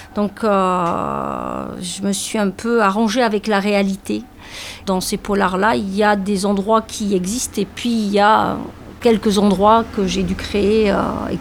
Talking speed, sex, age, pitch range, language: 180 wpm, female, 50-69, 190-215 Hz, French